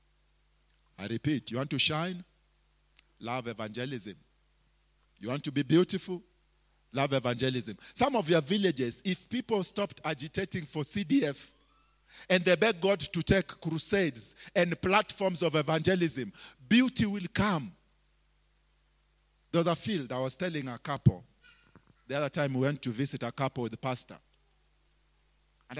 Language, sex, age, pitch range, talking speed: English, male, 40-59, 135-175 Hz, 140 wpm